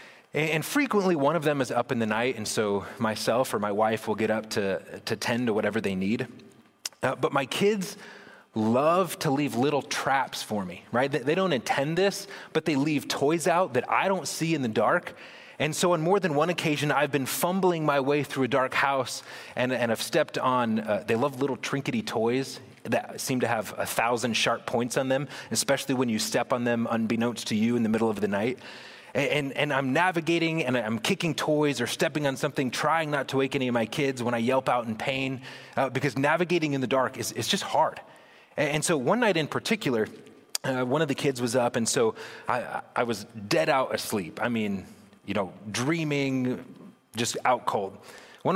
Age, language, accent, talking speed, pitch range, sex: 30-49, English, American, 215 wpm, 120-155 Hz, male